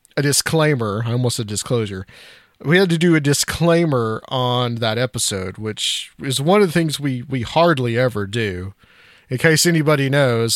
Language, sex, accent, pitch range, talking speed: English, male, American, 115-155 Hz, 165 wpm